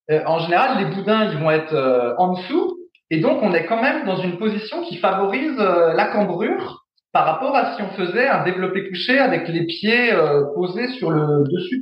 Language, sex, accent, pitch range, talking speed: French, male, French, 155-220 Hz, 210 wpm